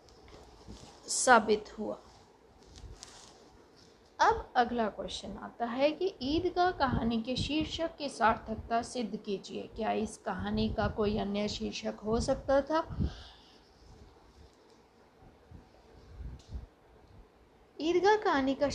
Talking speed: 95 wpm